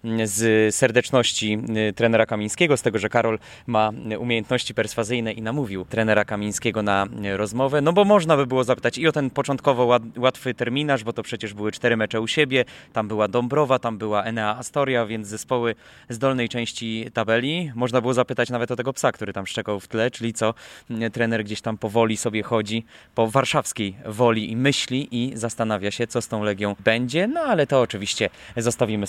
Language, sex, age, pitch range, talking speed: English, male, 20-39, 110-130 Hz, 180 wpm